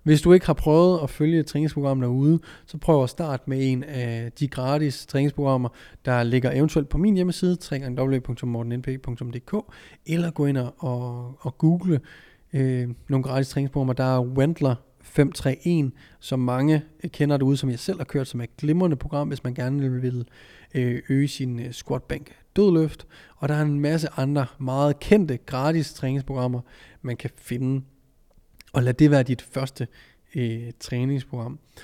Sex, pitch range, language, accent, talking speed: male, 125-150 Hz, Danish, native, 155 wpm